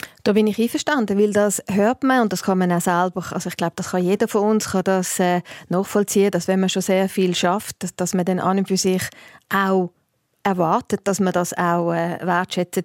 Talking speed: 225 wpm